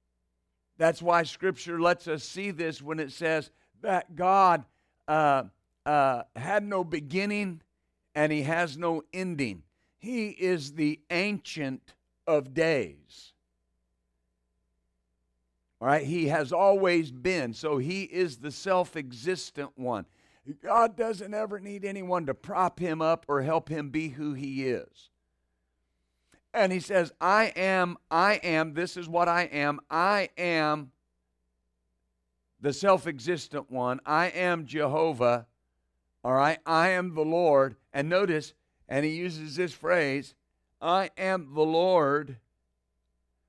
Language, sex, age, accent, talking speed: English, male, 50-69, American, 130 wpm